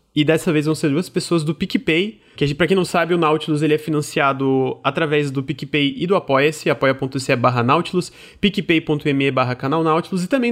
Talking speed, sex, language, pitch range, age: 210 wpm, male, Portuguese, 135-175 Hz, 20-39